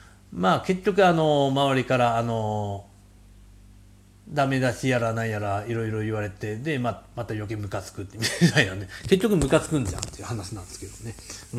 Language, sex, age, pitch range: Japanese, male, 40-59, 100-150 Hz